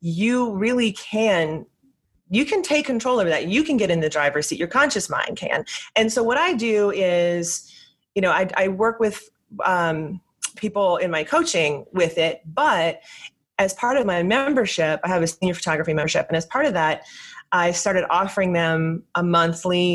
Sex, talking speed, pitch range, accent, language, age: female, 185 wpm, 165-210 Hz, American, English, 30-49